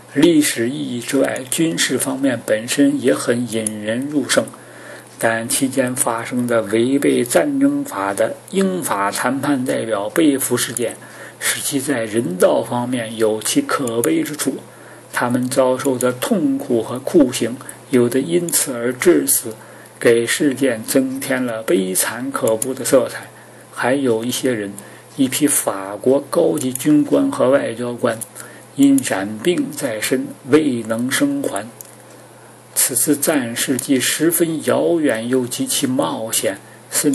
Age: 50-69